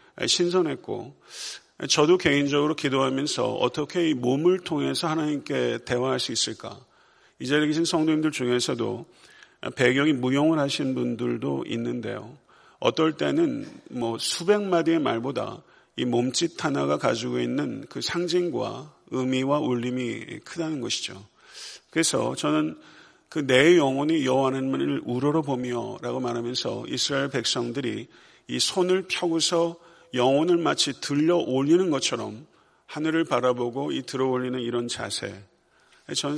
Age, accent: 40-59, native